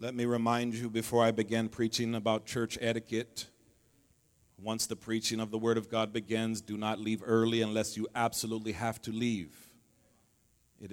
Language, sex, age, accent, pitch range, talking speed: English, male, 40-59, American, 95-115 Hz, 170 wpm